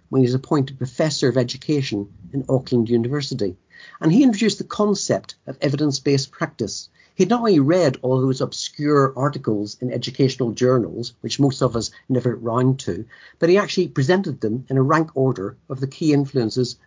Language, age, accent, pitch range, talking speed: English, 60-79, British, 120-150 Hz, 175 wpm